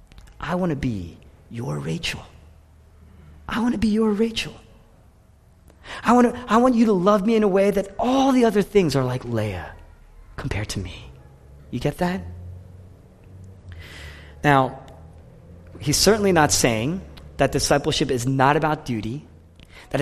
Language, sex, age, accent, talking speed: English, male, 30-49, American, 150 wpm